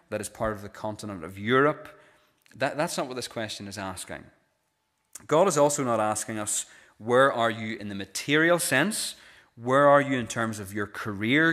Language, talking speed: English, 185 wpm